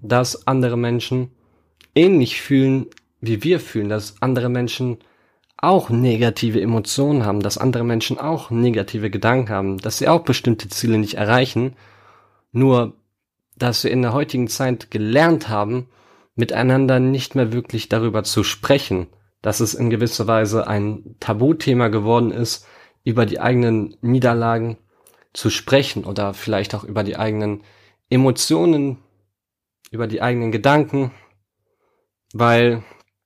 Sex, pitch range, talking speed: male, 110-130 Hz, 130 wpm